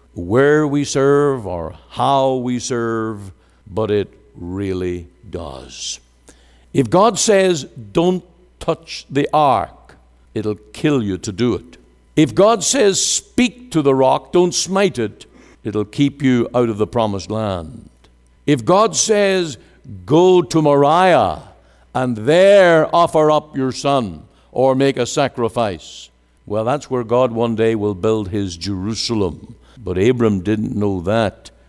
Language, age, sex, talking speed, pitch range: English, 60-79, male, 140 wpm, 95-145 Hz